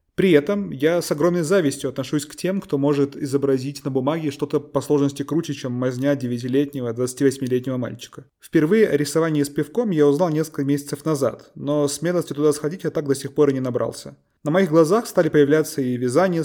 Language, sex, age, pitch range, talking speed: Russian, male, 20-39, 130-155 Hz, 185 wpm